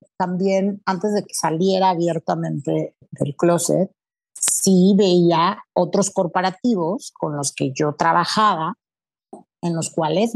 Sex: female